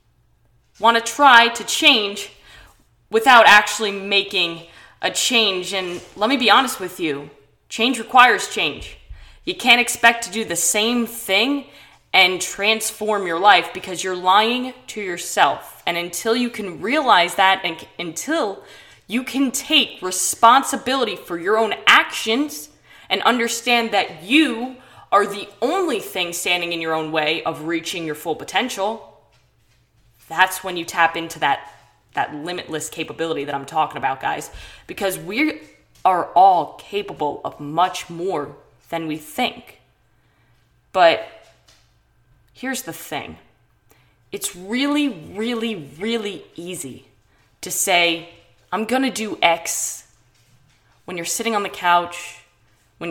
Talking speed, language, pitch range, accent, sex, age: 135 wpm, English, 165-230 Hz, American, female, 10-29